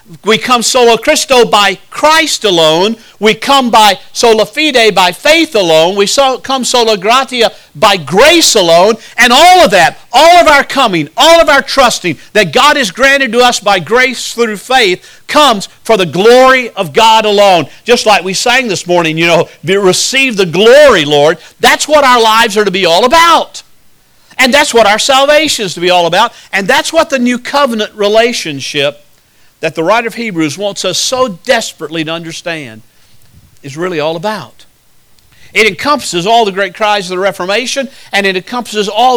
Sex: male